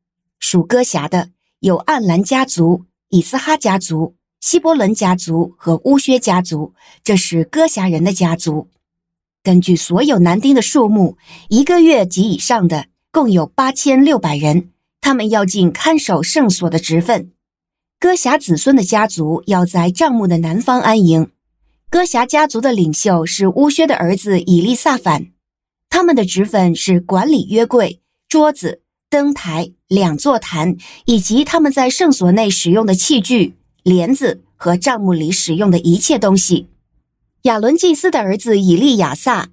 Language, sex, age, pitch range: Chinese, female, 60-79, 175-270 Hz